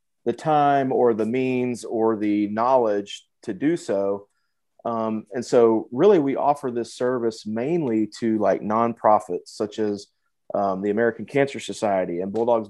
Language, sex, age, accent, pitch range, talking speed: English, male, 30-49, American, 105-125 Hz, 150 wpm